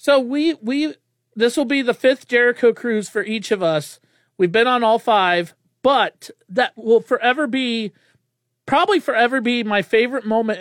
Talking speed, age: 170 wpm, 40-59